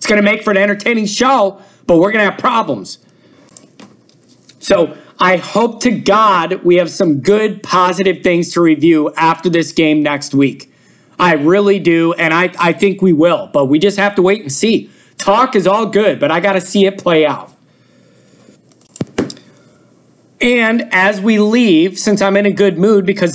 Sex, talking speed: male, 180 wpm